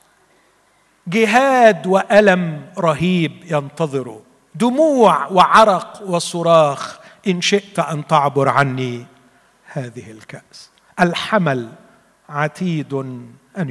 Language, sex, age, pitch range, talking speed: Arabic, male, 50-69, 155-215 Hz, 75 wpm